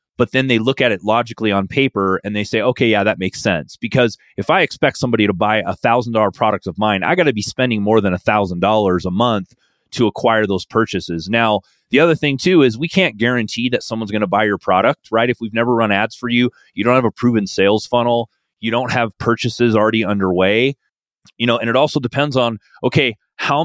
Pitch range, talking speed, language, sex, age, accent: 105-125 Hz, 230 wpm, English, male, 30-49, American